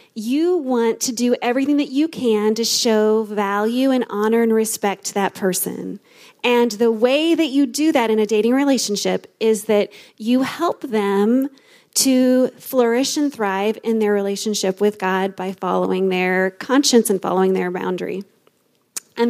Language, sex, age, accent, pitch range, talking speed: English, female, 30-49, American, 215-270 Hz, 160 wpm